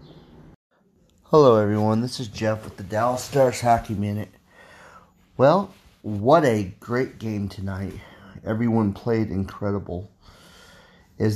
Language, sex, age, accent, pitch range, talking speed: English, male, 30-49, American, 95-120 Hz, 110 wpm